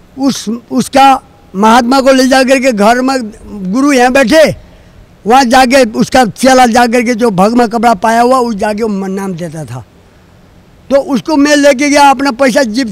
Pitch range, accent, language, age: 175-260 Hz, native, Hindi, 50-69